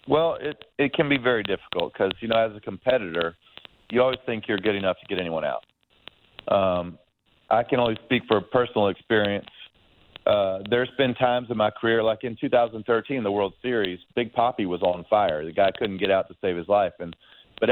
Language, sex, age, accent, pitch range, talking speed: English, male, 40-59, American, 95-125 Hz, 205 wpm